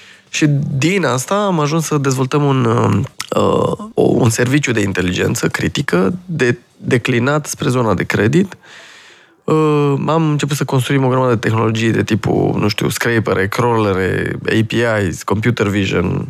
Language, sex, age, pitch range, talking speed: Romanian, male, 20-39, 115-150 Hz, 140 wpm